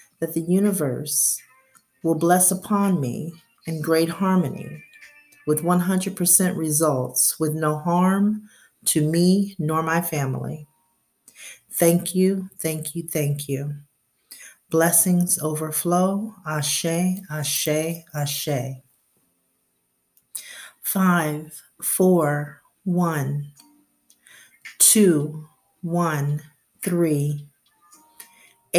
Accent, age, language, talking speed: American, 40-59, English, 80 wpm